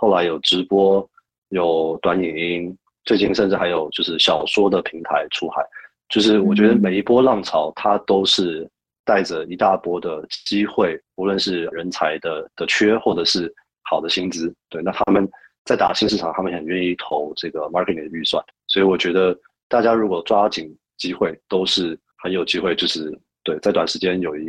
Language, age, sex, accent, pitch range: Chinese, 30-49, male, native, 90-110 Hz